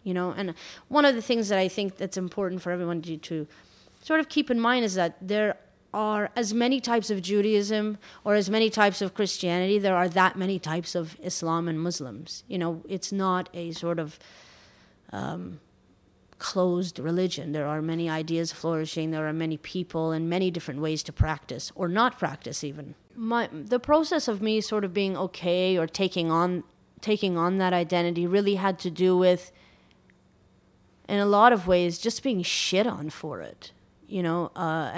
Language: English